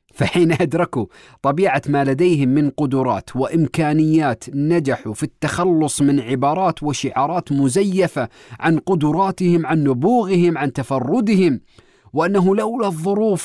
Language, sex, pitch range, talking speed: Arabic, male, 130-175 Hz, 105 wpm